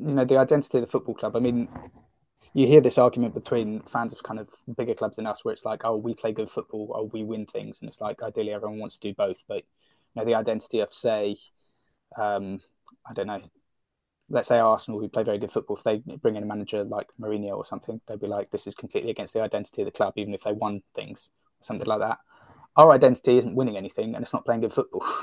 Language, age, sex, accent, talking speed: English, 20-39, male, British, 250 wpm